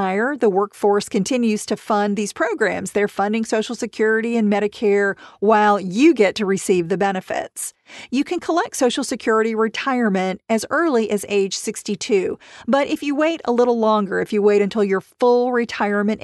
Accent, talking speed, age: American, 165 wpm, 40-59